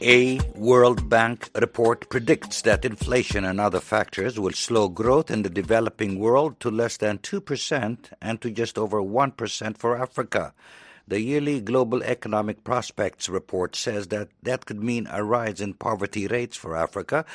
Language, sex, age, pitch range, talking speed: English, male, 60-79, 105-130 Hz, 160 wpm